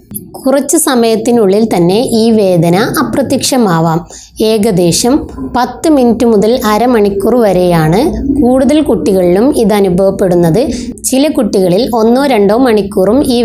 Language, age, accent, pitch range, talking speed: Malayalam, 20-39, native, 200-250 Hz, 100 wpm